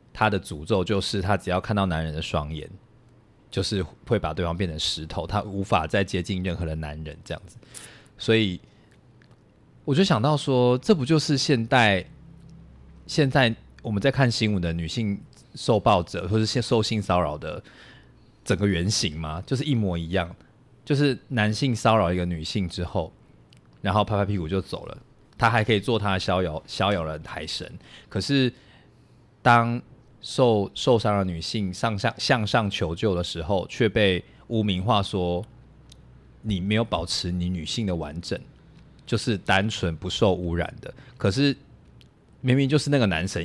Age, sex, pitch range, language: 20-39, male, 90-115 Hz, Chinese